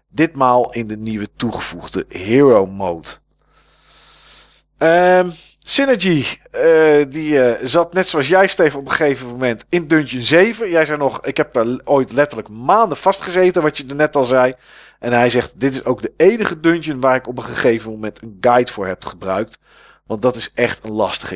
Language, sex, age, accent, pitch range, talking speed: Dutch, male, 40-59, Dutch, 120-160 Hz, 185 wpm